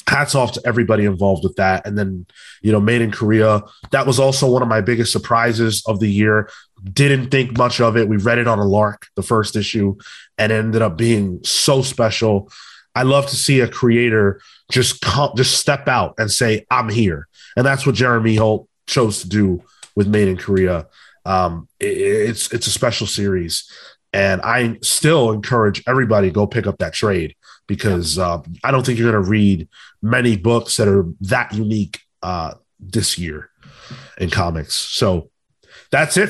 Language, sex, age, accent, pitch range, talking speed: English, male, 30-49, American, 105-135 Hz, 185 wpm